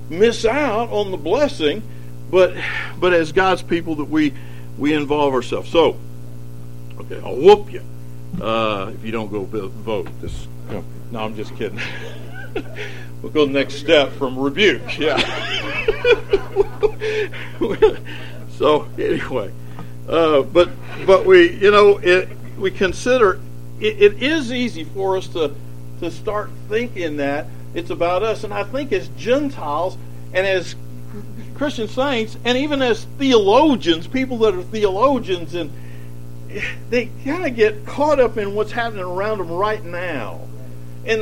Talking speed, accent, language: 145 wpm, American, English